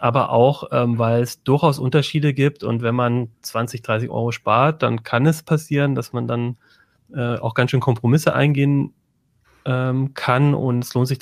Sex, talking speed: male, 180 wpm